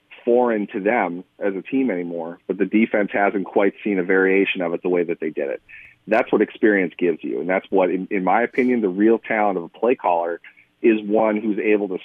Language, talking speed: English, 235 wpm